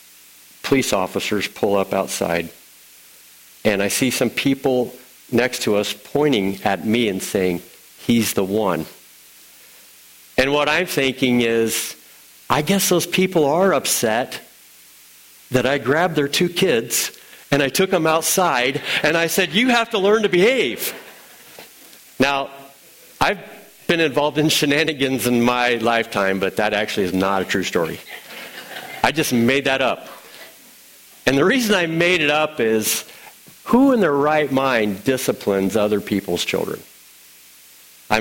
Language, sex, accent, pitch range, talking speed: English, male, American, 105-165 Hz, 145 wpm